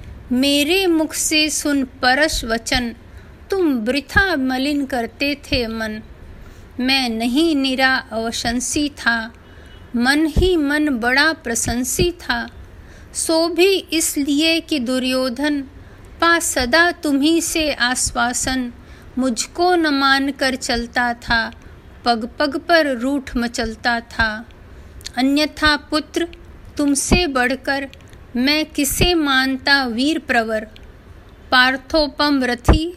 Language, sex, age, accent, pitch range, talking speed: Hindi, female, 50-69, native, 250-310 Hz, 95 wpm